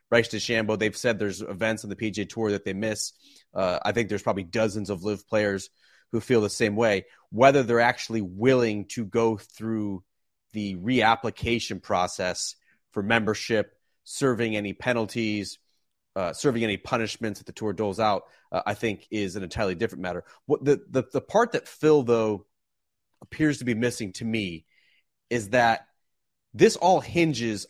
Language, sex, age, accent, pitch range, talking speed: English, male, 30-49, American, 105-130 Hz, 170 wpm